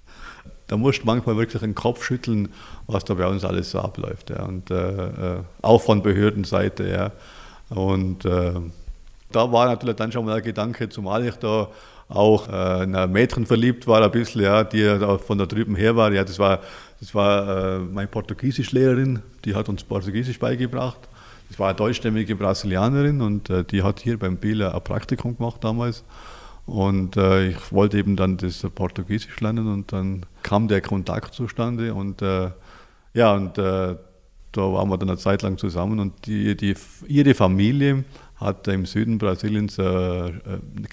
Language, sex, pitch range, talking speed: German, male, 95-115 Hz, 170 wpm